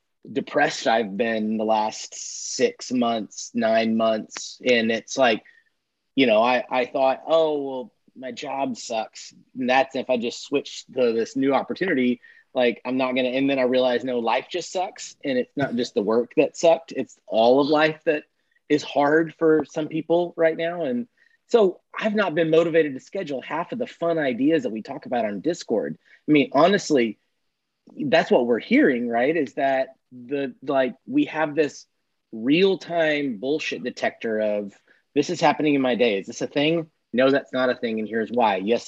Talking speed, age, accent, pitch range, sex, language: 190 wpm, 30-49, American, 120-165 Hz, male, English